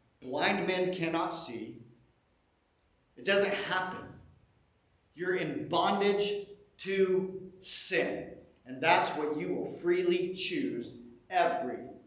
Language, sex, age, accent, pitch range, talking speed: English, male, 50-69, American, 145-205 Hz, 100 wpm